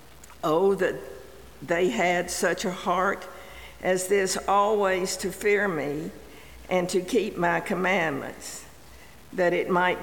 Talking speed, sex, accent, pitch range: 125 wpm, female, American, 175-200 Hz